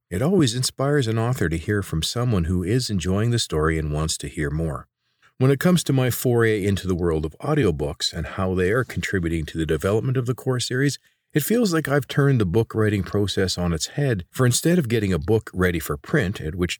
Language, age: English, 40-59